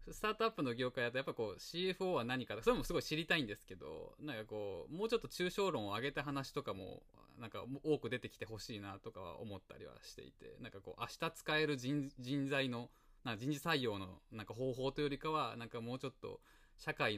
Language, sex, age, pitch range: Japanese, male, 20-39, 105-150 Hz